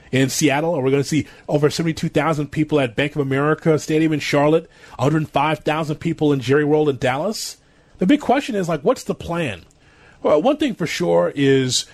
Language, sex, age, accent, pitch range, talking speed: English, male, 30-49, American, 150-200 Hz, 185 wpm